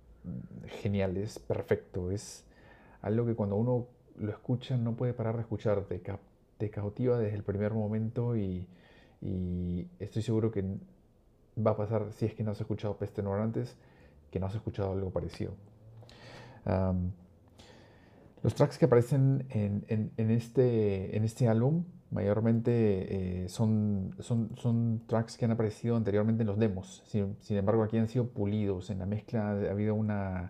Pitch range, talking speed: 100-115 Hz, 160 wpm